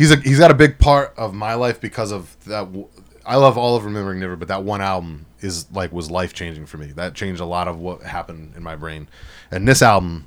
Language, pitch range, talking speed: English, 85-115 Hz, 250 wpm